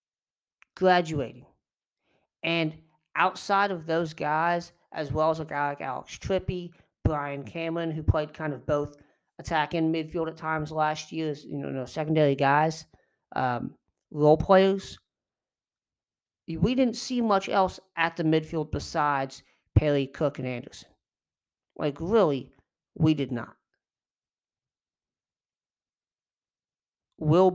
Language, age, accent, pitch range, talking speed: English, 40-59, American, 140-170 Hz, 120 wpm